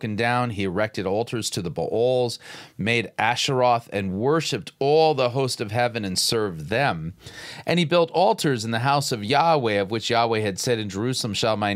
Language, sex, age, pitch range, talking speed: English, male, 40-59, 105-135 Hz, 190 wpm